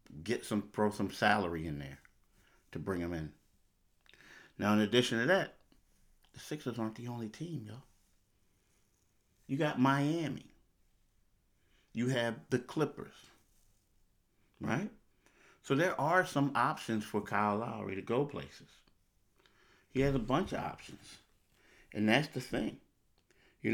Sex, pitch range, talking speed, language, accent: male, 95-120 Hz, 135 wpm, English, American